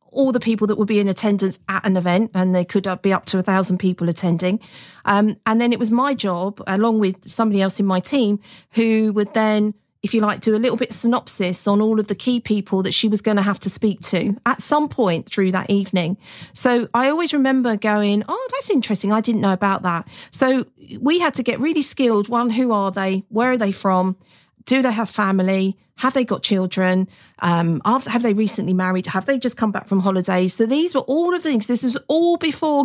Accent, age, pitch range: British, 40-59, 190-245 Hz